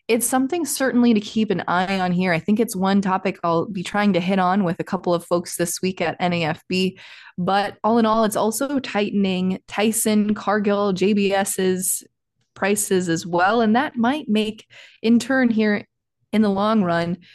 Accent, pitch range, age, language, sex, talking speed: American, 180-215 Hz, 20-39, English, female, 185 wpm